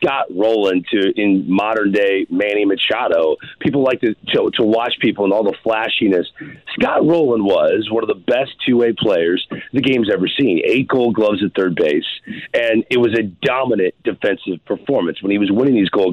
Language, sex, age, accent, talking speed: English, male, 40-59, American, 195 wpm